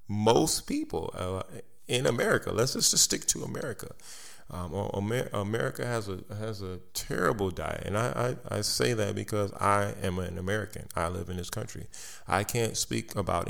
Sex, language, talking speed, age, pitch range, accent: male, English, 165 wpm, 30-49, 95-115 Hz, American